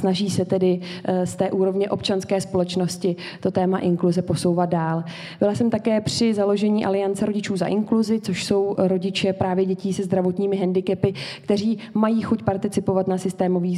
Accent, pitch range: native, 180-205 Hz